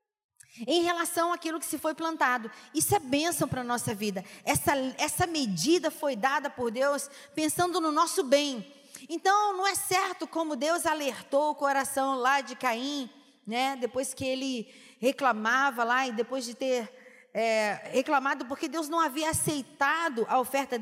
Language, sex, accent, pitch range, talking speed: Portuguese, female, Brazilian, 265-335 Hz, 160 wpm